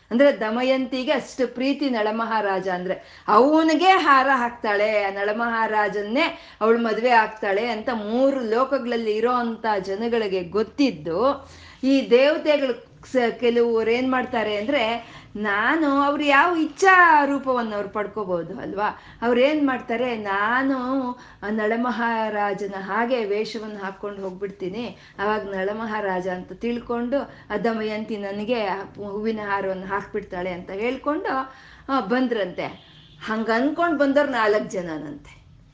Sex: female